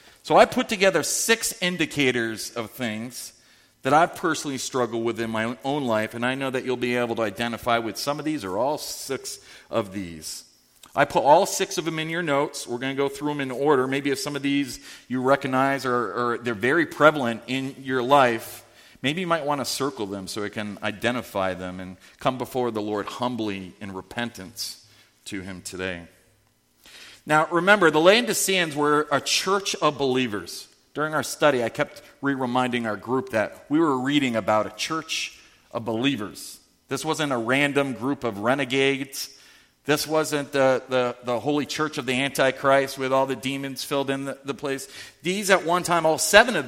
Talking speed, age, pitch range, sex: 190 wpm, 40-59, 115-150 Hz, male